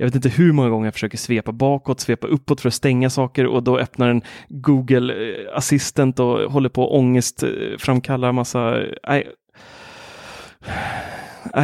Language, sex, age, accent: Swedish, male, 30-49, native